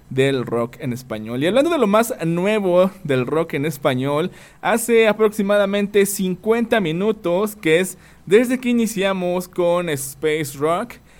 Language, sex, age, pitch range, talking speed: Spanish, male, 20-39, 140-190 Hz, 140 wpm